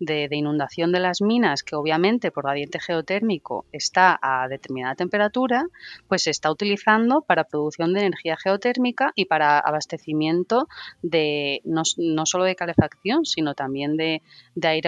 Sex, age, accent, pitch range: female, 30-49, Spanish, 150-185 Hz